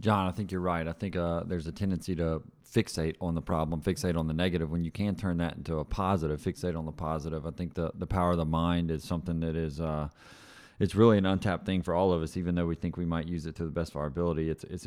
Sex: male